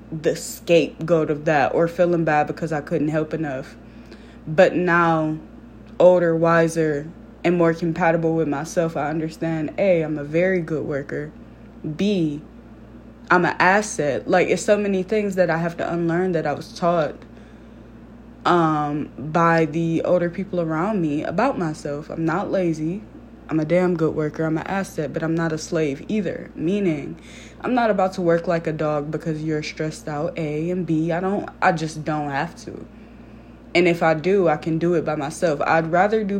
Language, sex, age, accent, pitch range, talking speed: English, female, 20-39, American, 155-175 Hz, 180 wpm